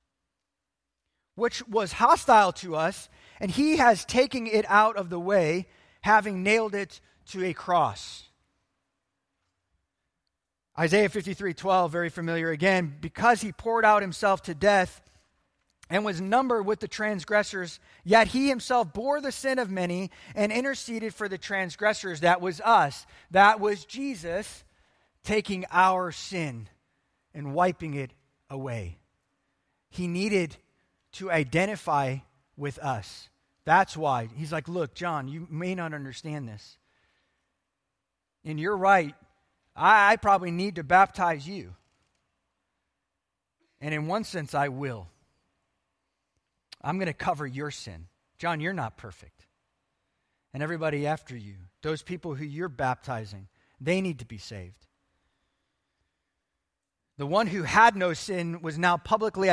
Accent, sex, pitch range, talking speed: American, male, 135-200 Hz, 130 wpm